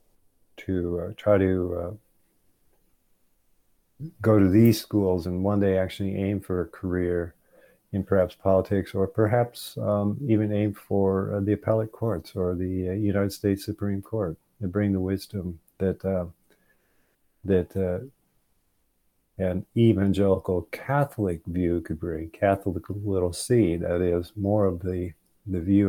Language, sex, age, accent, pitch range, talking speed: English, male, 50-69, American, 90-100 Hz, 140 wpm